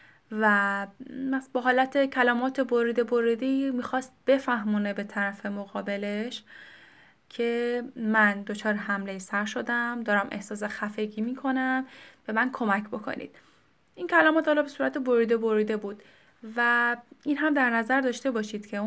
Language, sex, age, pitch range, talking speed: Persian, female, 10-29, 215-270 Hz, 125 wpm